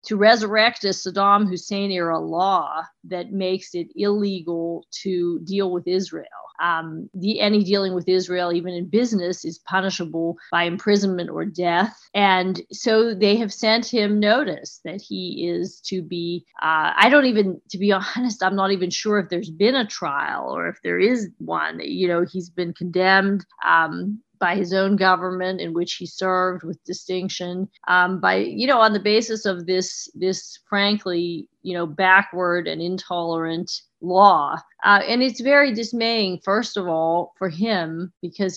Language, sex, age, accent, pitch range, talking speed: English, female, 40-59, American, 175-200 Hz, 165 wpm